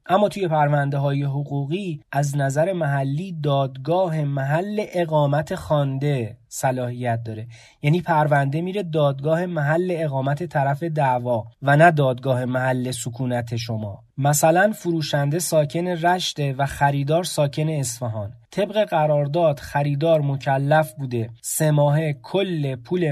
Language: Persian